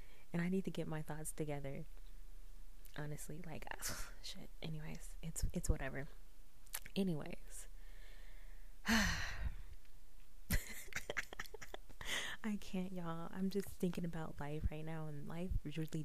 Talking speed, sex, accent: 110 wpm, female, American